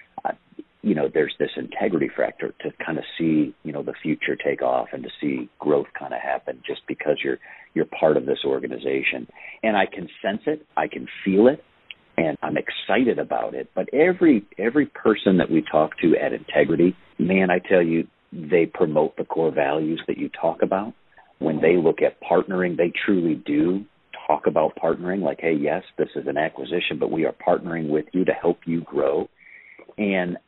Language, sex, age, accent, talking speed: English, male, 50-69, American, 195 wpm